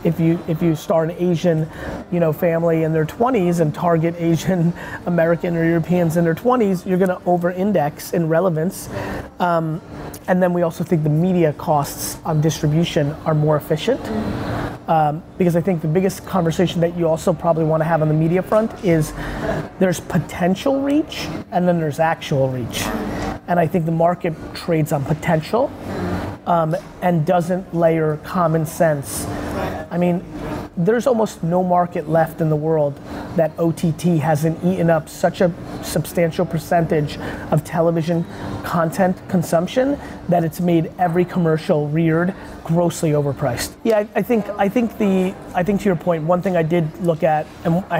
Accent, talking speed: American, 165 wpm